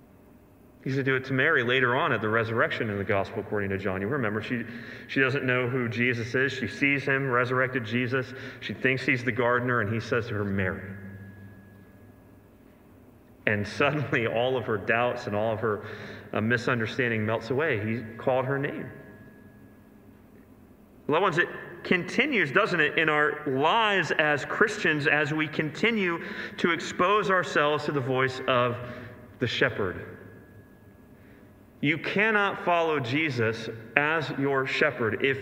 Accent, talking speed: American, 155 wpm